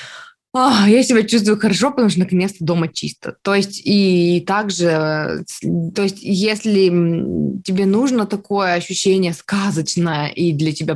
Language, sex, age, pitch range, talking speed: Russian, female, 20-39, 160-205 Hz, 135 wpm